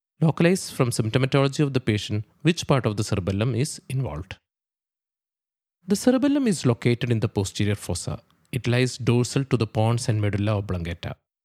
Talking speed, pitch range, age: 155 wpm, 105-135 Hz, 20-39